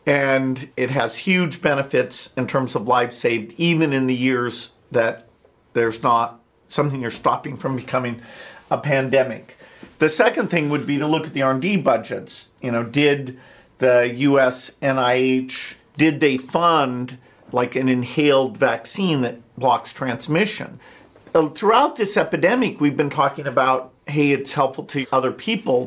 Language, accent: English, American